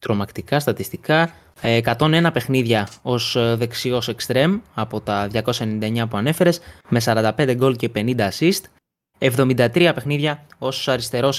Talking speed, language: 115 wpm, Greek